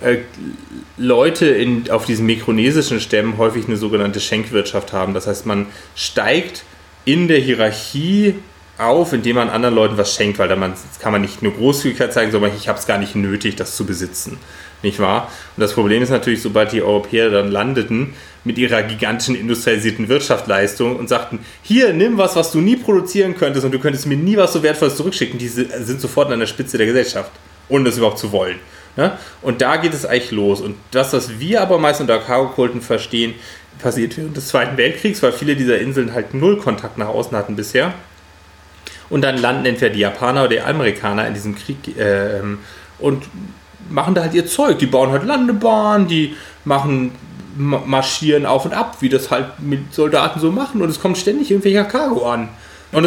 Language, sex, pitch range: German, male, 105-150 Hz